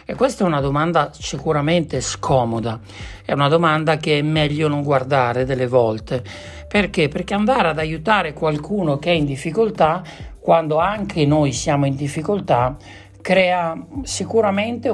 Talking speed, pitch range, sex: 140 wpm, 130-170 Hz, male